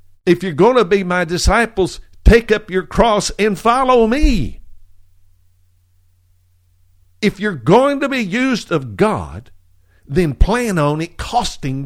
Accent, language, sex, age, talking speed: American, English, male, 60-79, 135 wpm